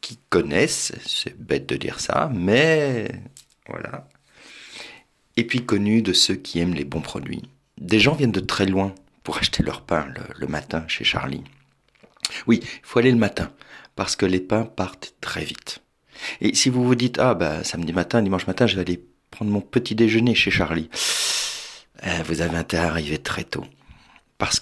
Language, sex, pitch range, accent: French, male, 85-115 Hz, French